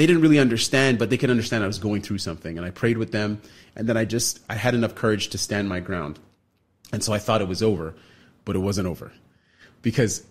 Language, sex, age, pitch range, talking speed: English, male, 30-49, 95-115 Hz, 245 wpm